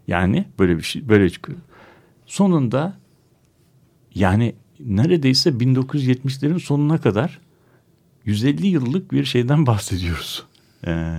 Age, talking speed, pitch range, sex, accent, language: 60-79, 95 wpm, 100-145 Hz, male, native, Turkish